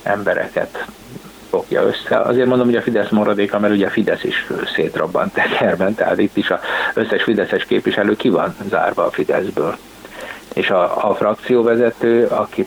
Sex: male